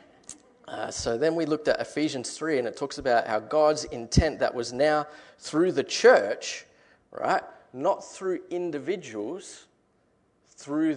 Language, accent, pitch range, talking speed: English, Australian, 115-165 Hz, 140 wpm